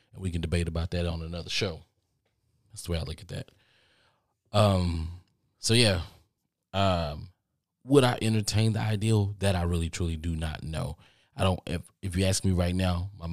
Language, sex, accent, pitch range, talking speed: English, male, American, 85-105 Hz, 185 wpm